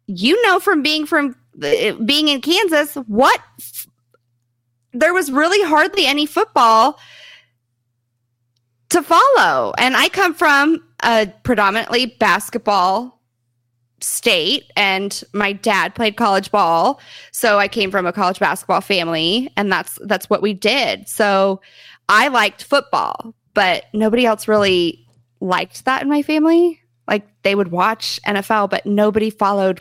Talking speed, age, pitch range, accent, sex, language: 135 wpm, 20-39, 190-260 Hz, American, female, English